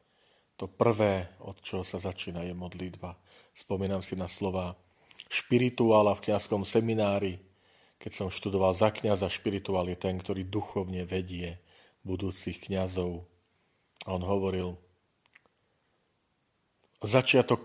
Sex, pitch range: male, 90-105 Hz